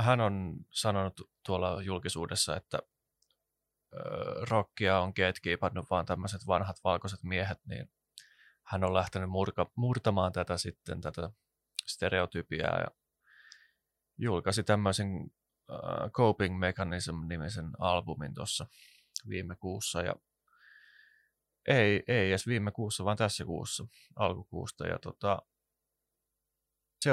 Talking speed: 105 wpm